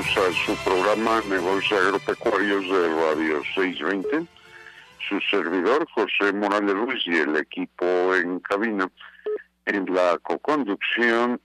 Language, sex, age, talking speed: Spanish, male, 60-79, 110 wpm